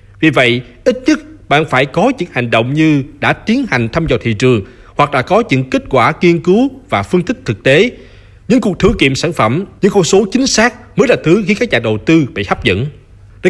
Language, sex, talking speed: Vietnamese, male, 240 wpm